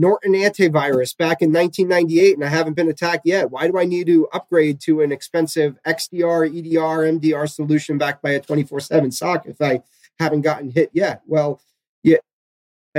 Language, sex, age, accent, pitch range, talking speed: English, male, 30-49, American, 130-160 Hz, 170 wpm